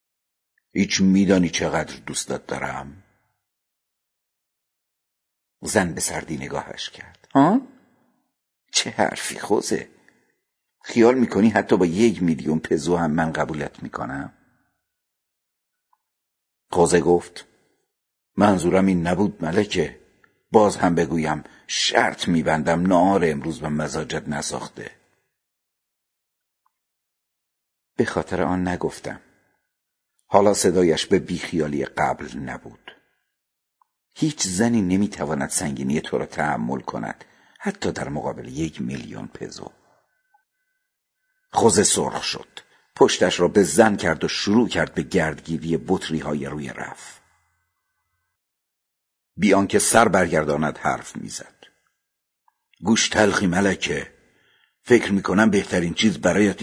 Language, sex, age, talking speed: Persian, male, 50-69, 105 wpm